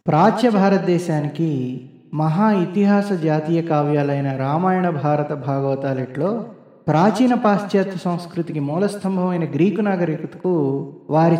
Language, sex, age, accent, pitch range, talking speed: Telugu, male, 20-39, native, 150-195 Hz, 95 wpm